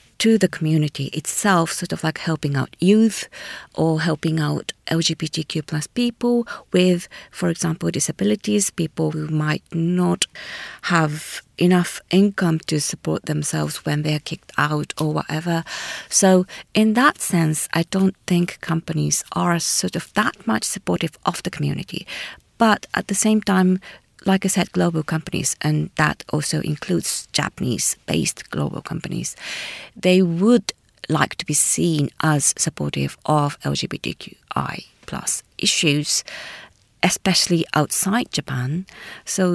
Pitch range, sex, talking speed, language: 150-185 Hz, female, 130 wpm, English